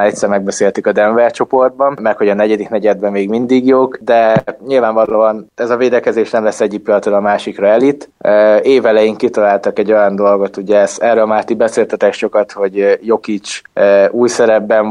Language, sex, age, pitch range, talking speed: Hungarian, male, 20-39, 105-120 Hz, 160 wpm